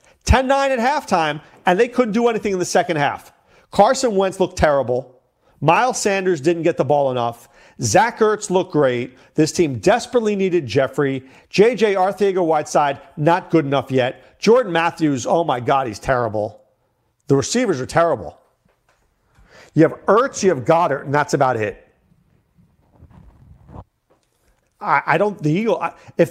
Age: 40-59